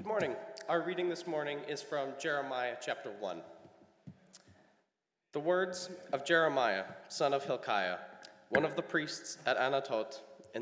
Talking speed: 140 wpm